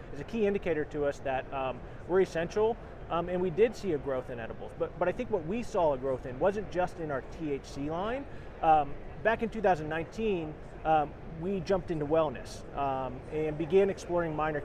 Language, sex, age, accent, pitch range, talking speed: English, male, 30-49, American, 135-180 Hz, 200 wpm